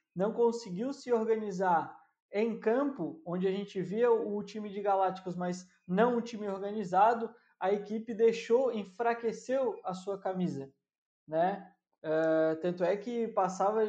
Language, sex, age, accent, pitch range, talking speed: Portuguese, male, 20-39, Brazilian, 180-225 Hz, 140 wpm